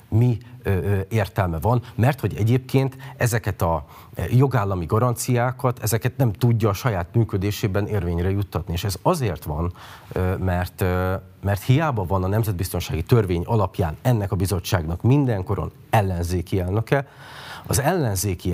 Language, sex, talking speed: Hungarian, male, 125 wpm